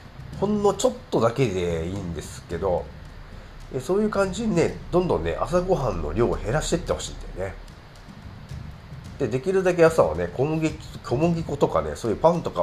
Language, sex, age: Japanese, male, 40-59